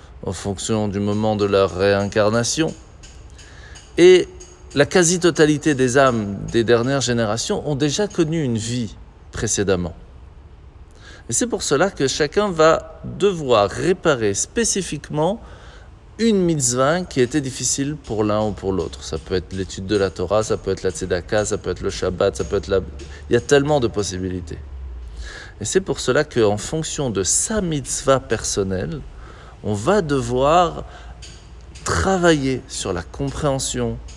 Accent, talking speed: French, 150 wpm